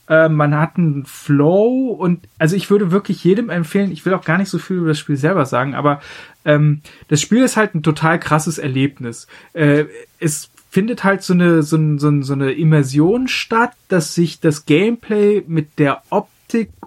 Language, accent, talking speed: German, German, 185 wpm